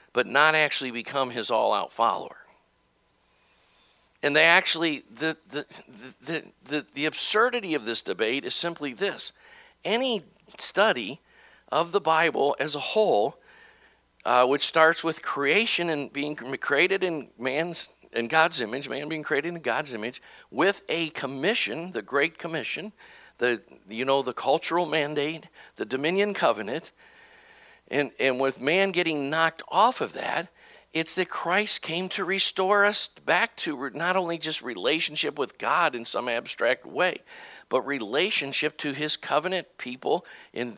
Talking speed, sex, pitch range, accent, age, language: 145 wpm, male, 140-185 Hz, American, 50-69, English